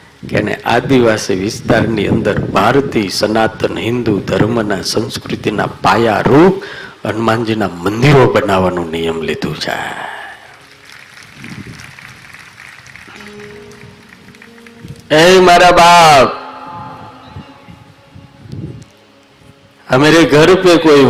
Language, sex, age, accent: Hindi, male, 50-69, native